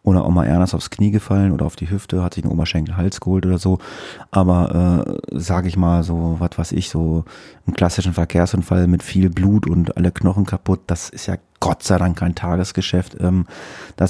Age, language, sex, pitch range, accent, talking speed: 30-49, German, male, 85-95 Hz, German, 200 wpm